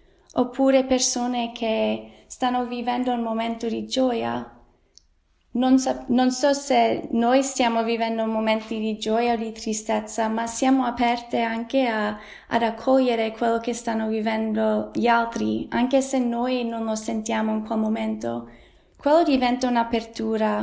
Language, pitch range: Italian, 220-255 Hz